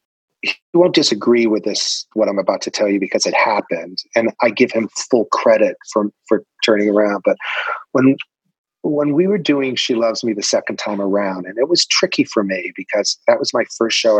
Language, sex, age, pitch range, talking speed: English, male, 30-49, 100-135 Hz, 205 wpm